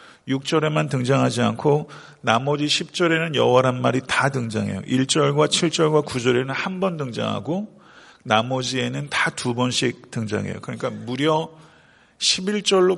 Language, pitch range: Korean, 125-155 Hz